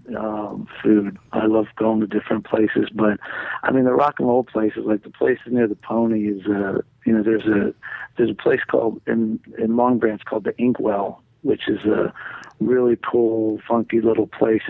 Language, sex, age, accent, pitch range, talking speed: English, male, 40-59, American, 105-115 Hz, 190 wpm